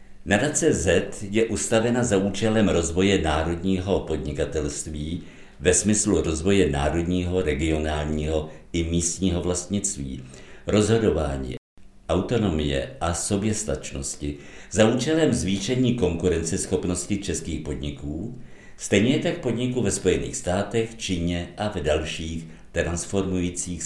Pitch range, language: 80-105 Hz, Czech